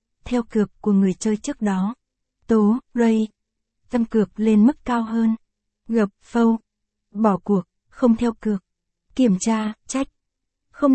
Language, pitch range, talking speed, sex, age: Vietnamese, 210-240 Hz, 140 wpm, female, 60-79